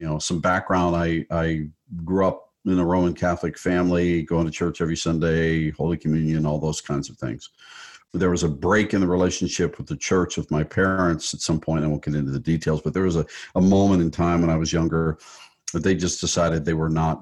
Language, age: English, 50-69